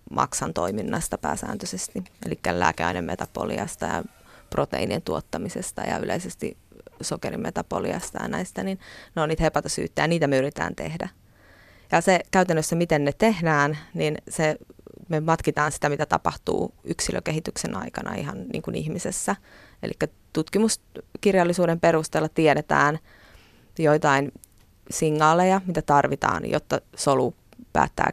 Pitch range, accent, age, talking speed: 100-165 Hz, native, 20-39, 110 wpm